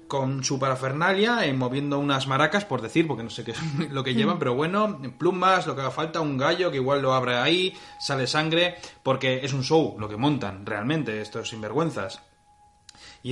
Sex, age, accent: male, 20-39, Spanish